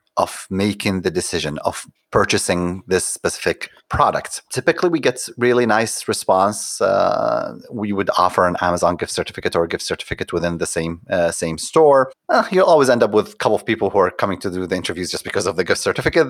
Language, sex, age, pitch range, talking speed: English, male, 30-49, 90-135 Hz, 205 wpm